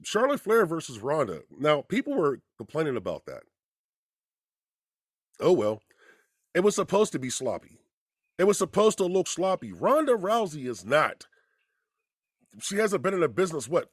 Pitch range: 160-255 Hz